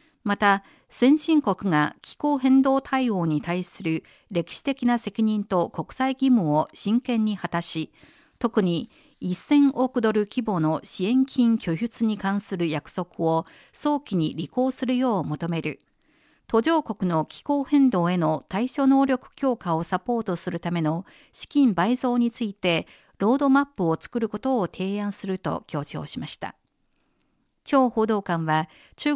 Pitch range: 170-255 Hz